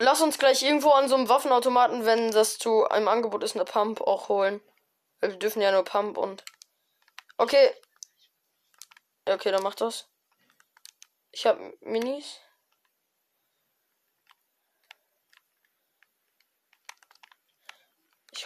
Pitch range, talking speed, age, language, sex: 225-320 Hz, 105 wpm, 10-29, German, female